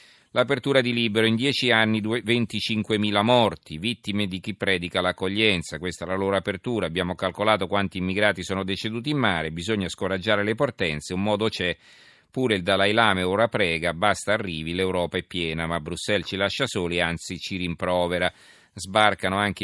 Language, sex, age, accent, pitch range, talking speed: Italian, male, 40-59, native, 95-115 Hz, 165 wpm